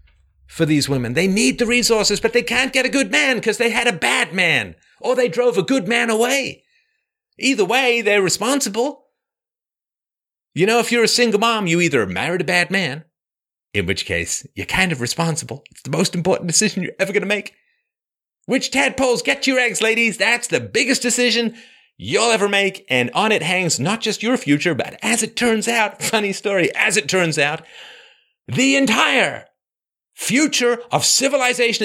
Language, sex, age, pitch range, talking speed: English, male, 40-59, 170-250 Hz, 185 wpm